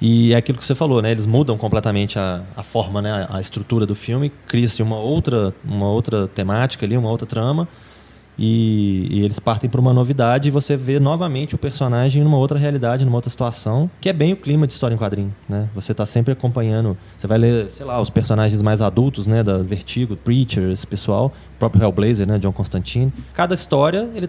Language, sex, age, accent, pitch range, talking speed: Portuguese, male, 20-39, Brazilian, 110-145 Hz, 210 wpm